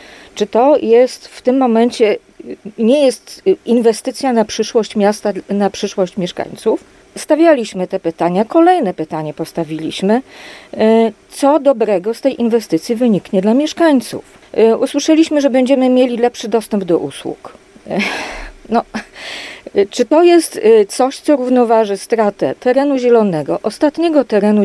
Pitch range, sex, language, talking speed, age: 190-265 Hz, female, Polish, 120 wpm, 40-59